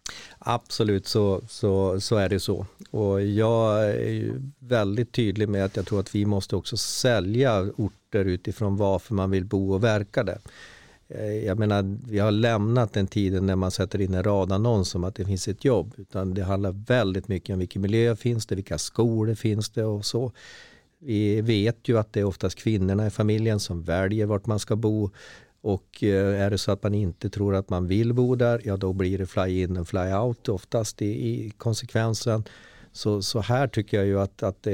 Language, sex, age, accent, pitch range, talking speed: Swedish, male, 40-59, native, 95-115 Hz, 205 wpm